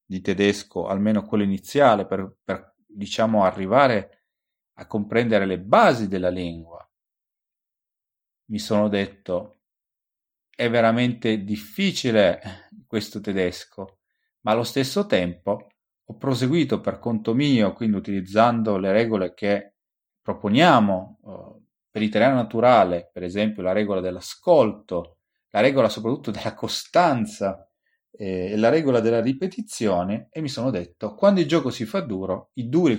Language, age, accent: Italian, 30-49, native